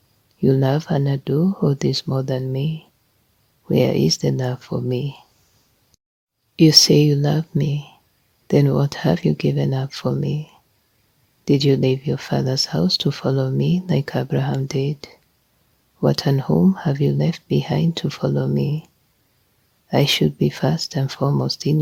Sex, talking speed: female, 155 wpm